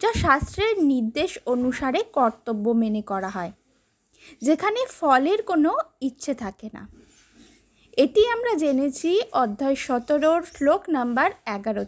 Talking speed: 110 wpm